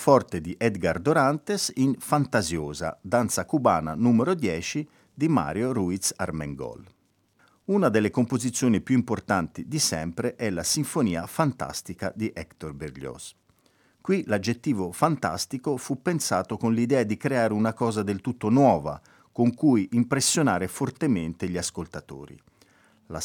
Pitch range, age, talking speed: 95-140 Hz, 50-69, 125 wpm